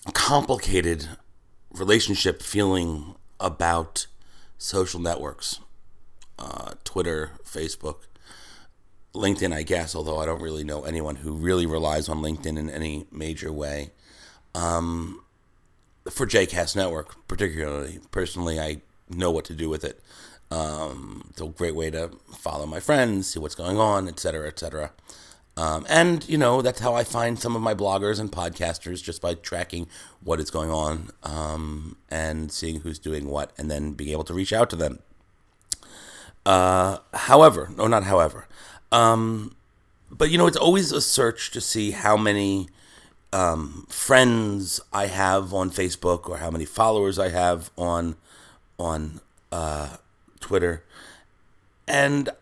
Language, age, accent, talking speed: English, 40-59, American, 145 wpm